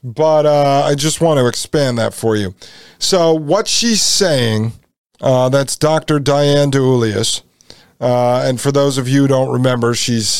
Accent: American